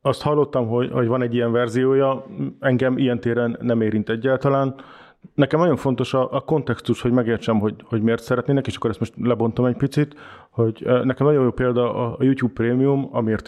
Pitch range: 115-135 Hz